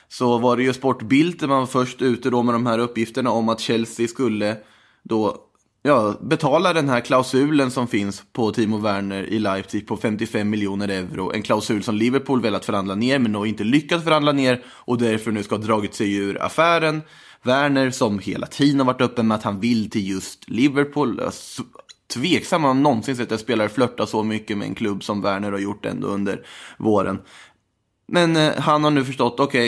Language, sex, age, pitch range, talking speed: Swedish, male, 20-39, 105-135 Hz, 200 wpm